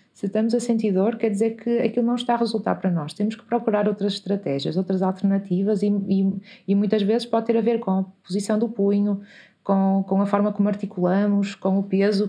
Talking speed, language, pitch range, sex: 210 wpm, Portuguese, 185-215 Hz, female